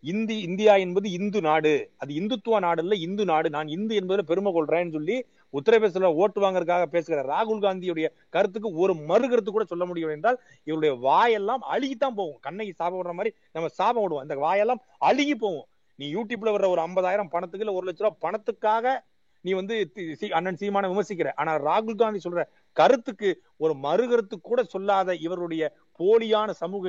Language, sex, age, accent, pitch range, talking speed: Tamil, male, 30-49, native, 175-220 Hz, 115 wpm